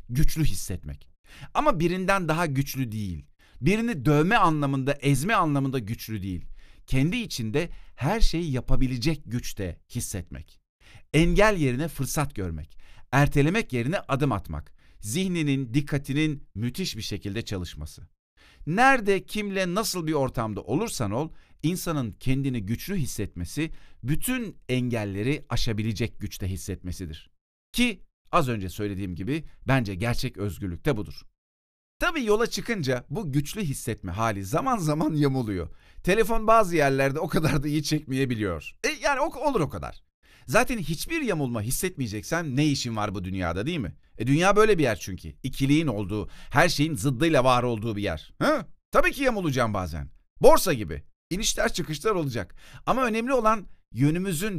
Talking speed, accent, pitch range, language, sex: 135 wpm, native, 100-165 Hz, Turkish, male